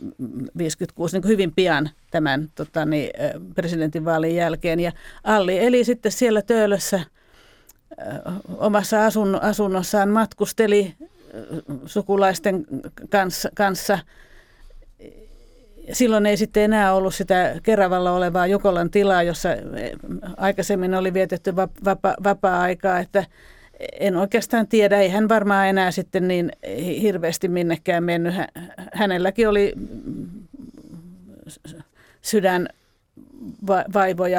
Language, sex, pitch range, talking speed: Finnish, female, 175-210 Hz, 95 wpm